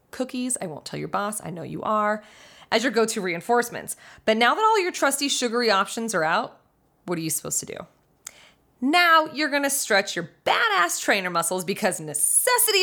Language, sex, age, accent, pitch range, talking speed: English, female, 20-39, American, 175-255 Hz, 190 wpm